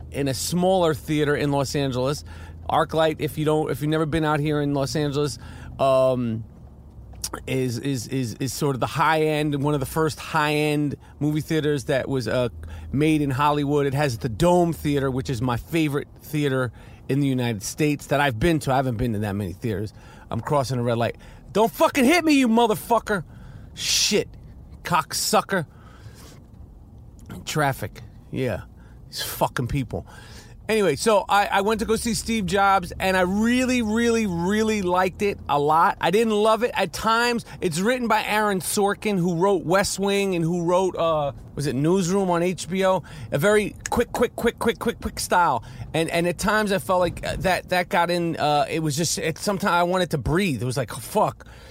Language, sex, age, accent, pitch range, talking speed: English, male, 40-59, American, 135-190 Hz, 190 wpm